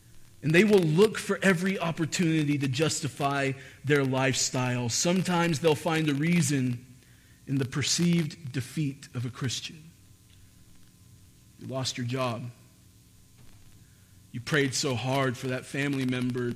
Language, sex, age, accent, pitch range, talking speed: English, male, 40-59, American, 115-165 Hz, 125 wpm